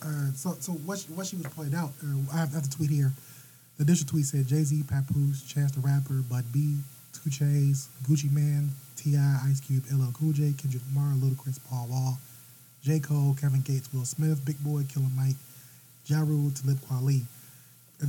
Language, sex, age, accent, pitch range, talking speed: English, male, 20-39, American, 130-145 Hz, 190 wpm